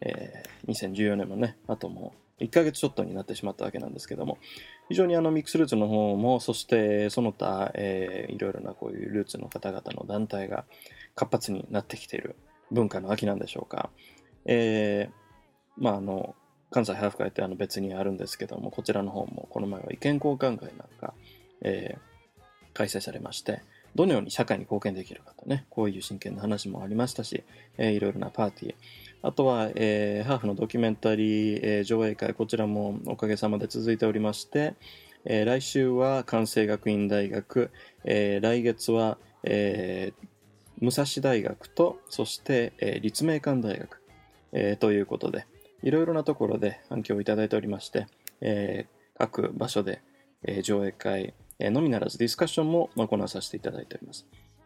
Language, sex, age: English, male, 20-39